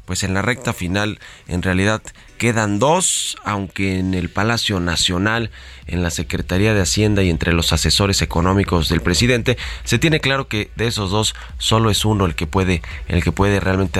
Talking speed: 185 wpm